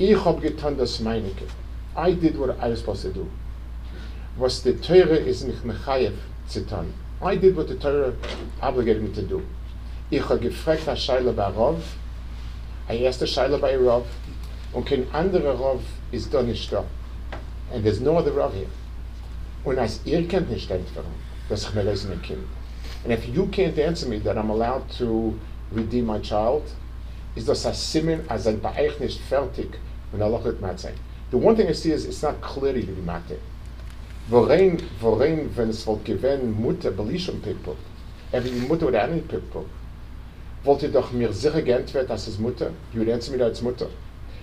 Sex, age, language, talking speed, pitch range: male, 50-69, English, 120 wpm, 85-140 Hz